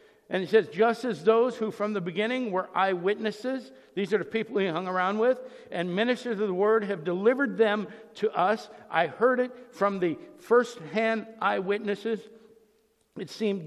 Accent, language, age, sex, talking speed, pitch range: American, English, 60-79, male, 170 wpm, 170-225 Hz